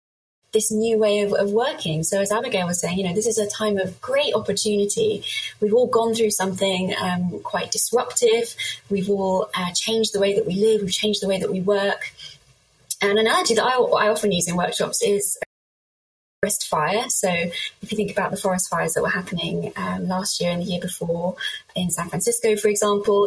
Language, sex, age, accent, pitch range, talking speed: English, female, 20-39, British, 185-220 Hz, 205 wpm